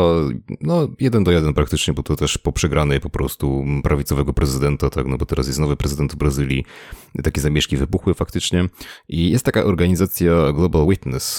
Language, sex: Polish, male